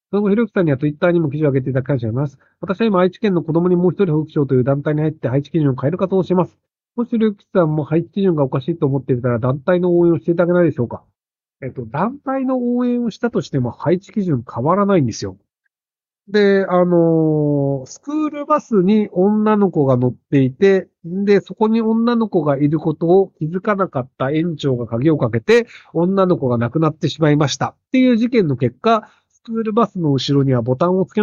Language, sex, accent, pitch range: Japanese, male, native, 135-205 Hz